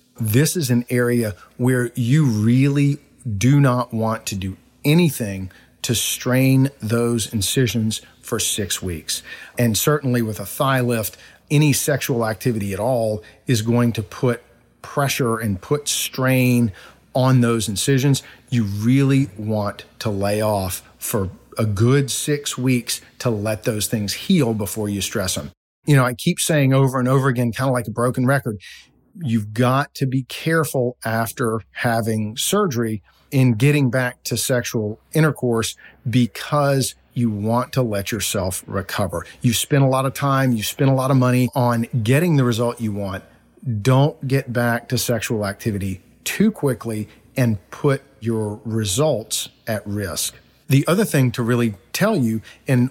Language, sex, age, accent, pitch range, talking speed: English, male, 40-59, American, 110-135 Hz, 155 wpm